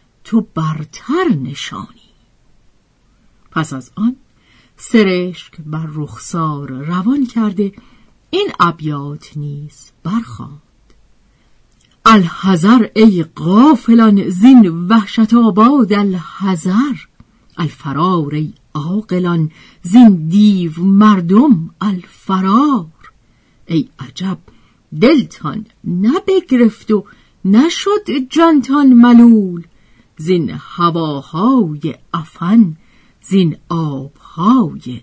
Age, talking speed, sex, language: 50-69, 70 wpm, female, Persian